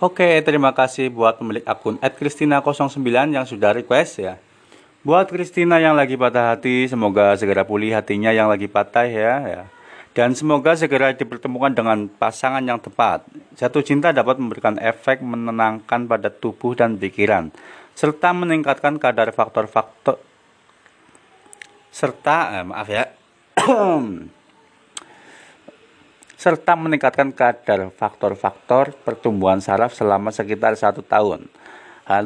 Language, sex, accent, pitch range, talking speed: Indonesian, male, native, 110-140 Hz, 120 wpm